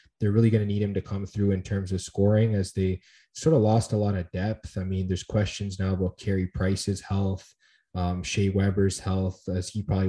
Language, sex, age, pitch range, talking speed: English, male, 20-39, 95-110 Hz, 225 wpm